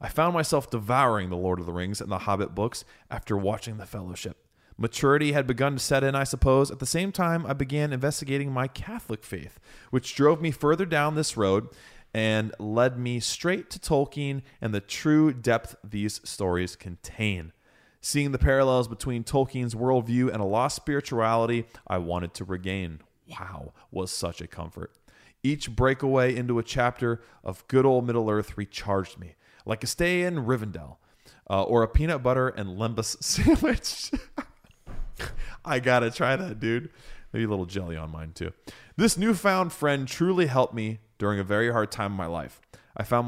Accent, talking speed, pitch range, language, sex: American, 175 wpm, 95-135 Hz, English, male